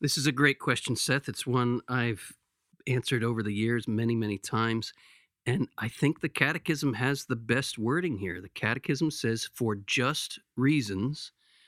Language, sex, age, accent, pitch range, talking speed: English, male, 50-69, American, 115-150 Hz, 165 wpm